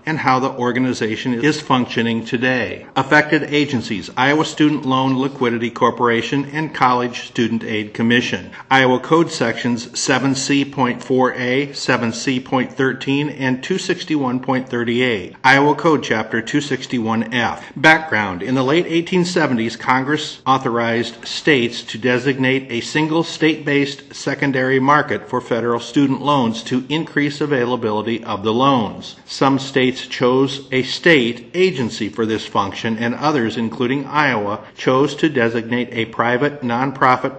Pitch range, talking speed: 115-140 Hz, 120 wpm